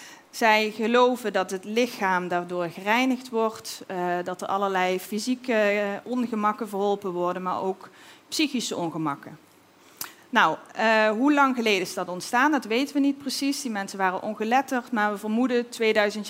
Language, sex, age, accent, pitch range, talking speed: Dutch, female, 40-59, Dutch, 185-250 Hz, 145 wpm